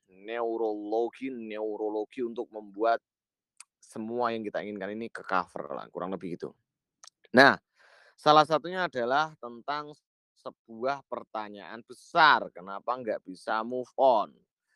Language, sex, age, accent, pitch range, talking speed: Indonesian, male, 20-39, native, 110-150 Hz, 110 wpm